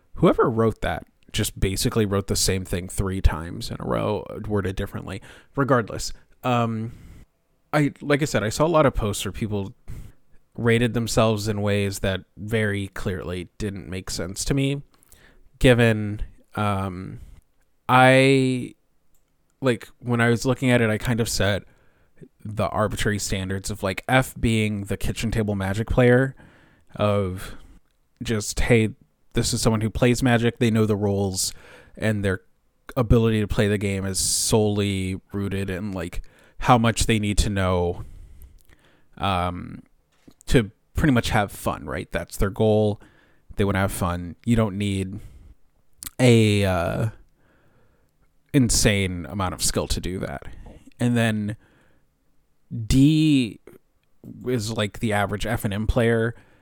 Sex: male